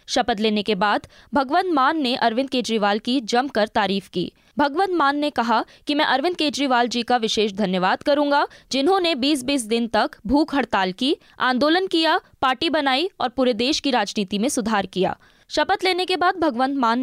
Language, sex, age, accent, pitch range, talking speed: Hindi, female, 20-39, native, 215-295 Hz, 180 wpm